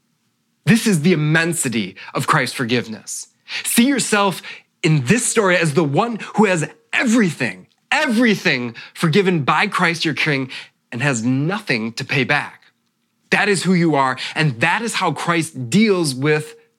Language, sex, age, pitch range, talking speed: English, male, 20-39, 145-205 Hz, 150 wpm